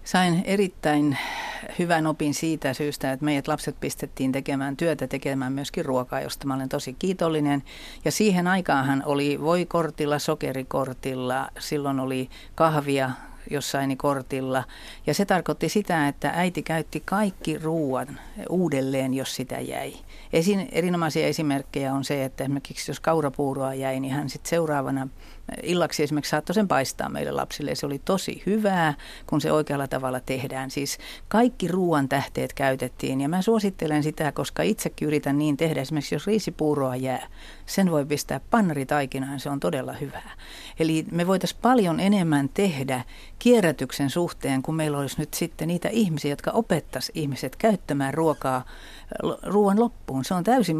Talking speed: 150 wpm